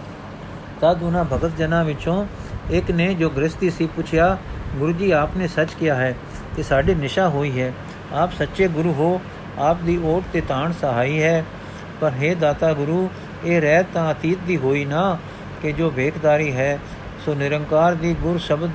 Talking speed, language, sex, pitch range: 170 wpm, Punjabi, male, 145-175 Hz